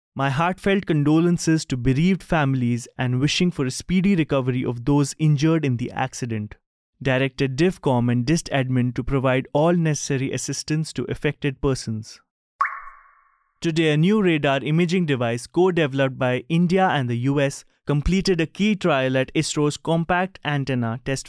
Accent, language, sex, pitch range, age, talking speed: Indian, English, male, 130-170 Hz, 20-39, 145 wpm